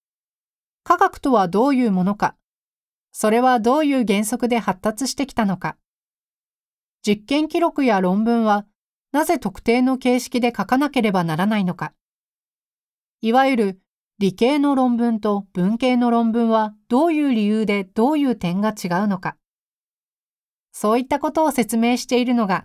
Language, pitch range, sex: Japanese, 200-265 Hz, female